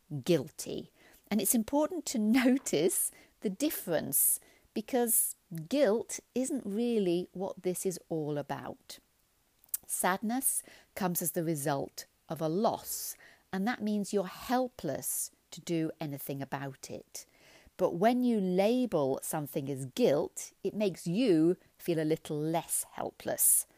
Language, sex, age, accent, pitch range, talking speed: English, female, 40-59, British, 155-220 Hz, 125 wpm